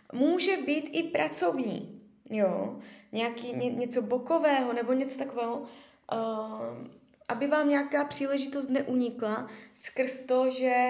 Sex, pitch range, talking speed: female, 215-260 Hz, 115 wpm